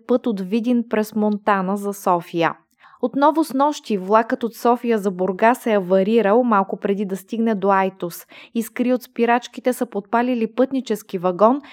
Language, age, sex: Bulgarian, 20-39, female